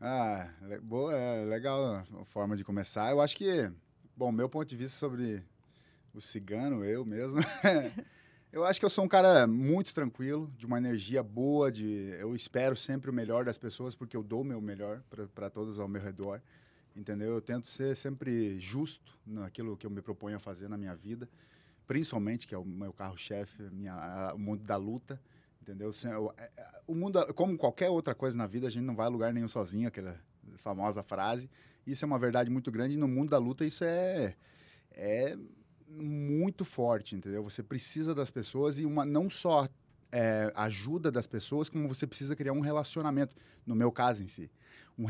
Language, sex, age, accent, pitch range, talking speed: Portuguese, male, 20-39, Brazilian, 105-145 Hz, 190 wpm